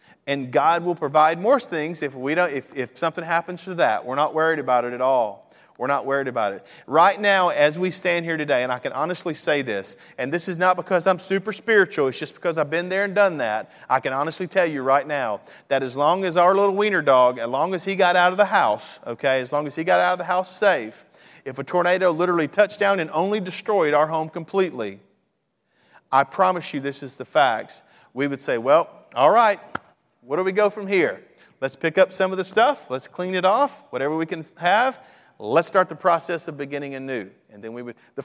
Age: 40-59